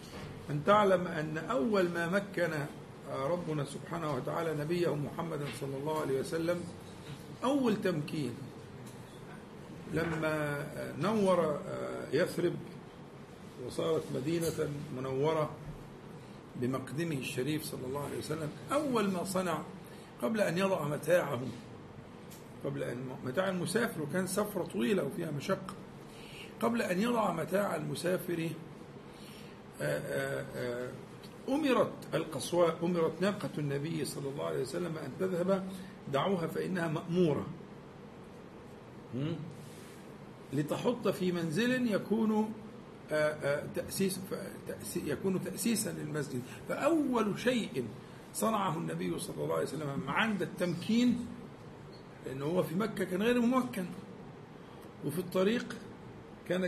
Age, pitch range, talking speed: 50-69, 150-195 Hz, 95 wpm